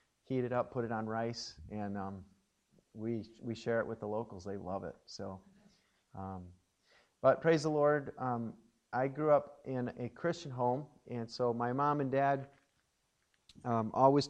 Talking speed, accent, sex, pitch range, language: 170 wpm, American, male, 110-135 Hz, English